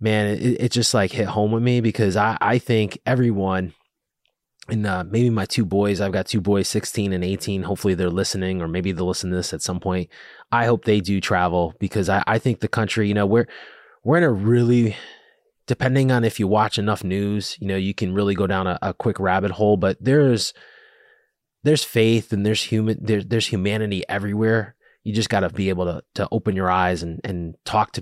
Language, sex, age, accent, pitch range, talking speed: English, male, 20-39, American, 95-115 Hz, 220 wpm